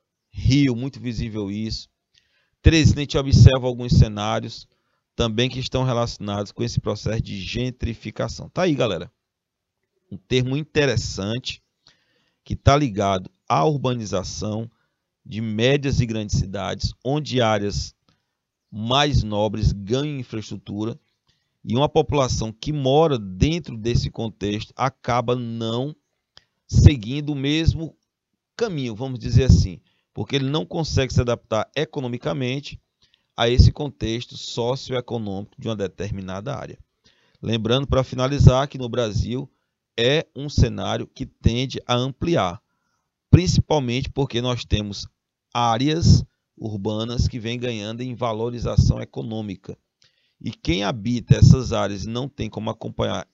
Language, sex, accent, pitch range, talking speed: Portuguese, male, Brazilian, 110-135 Hz, 120 wpm